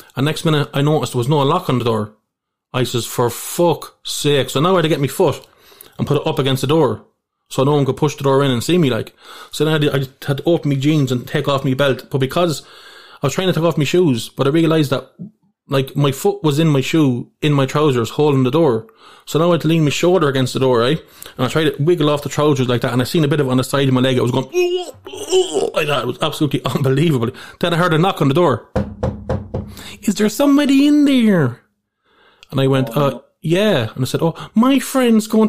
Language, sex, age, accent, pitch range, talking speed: English, male, 20-39, Irish, 130-165 Hz, 270 wpm